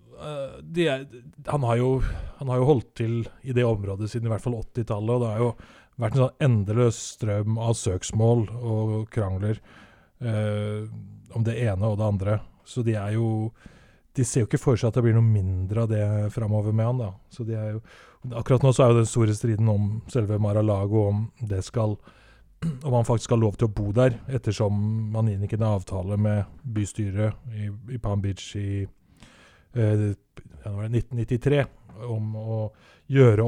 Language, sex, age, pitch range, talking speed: English, male, 20-39, 105-120 Hz, 185 wpm